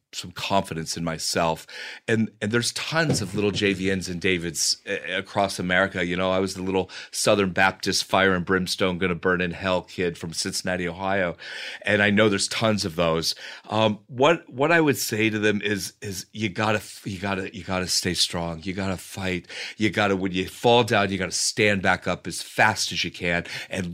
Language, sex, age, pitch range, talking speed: English, male, 40-59, 95-110 Hz, 200 wpm